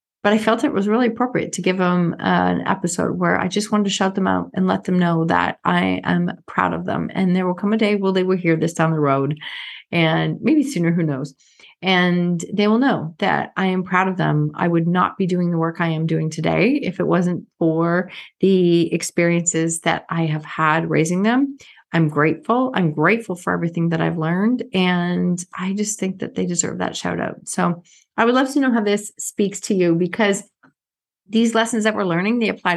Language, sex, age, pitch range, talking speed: English, female, 30-49, 170-215 Hz, 220 wpm